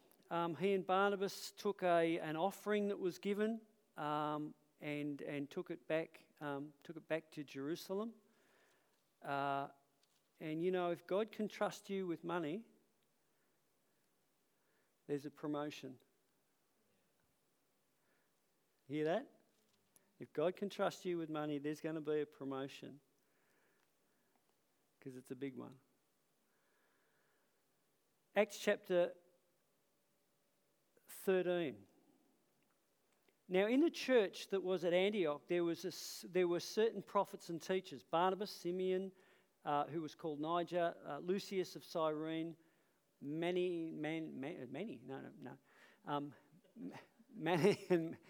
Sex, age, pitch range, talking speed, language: male, 50-69, 150-190 Hz, 120 wpm, English